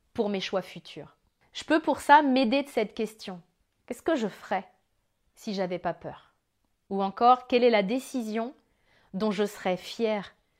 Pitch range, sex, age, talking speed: 185-230 Hz, female, 30-49, 170 wpm